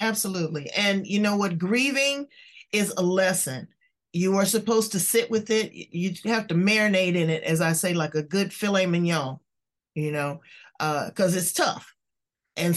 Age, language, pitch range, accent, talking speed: 40-59, English, 170-225 Hz, American, 175 wpm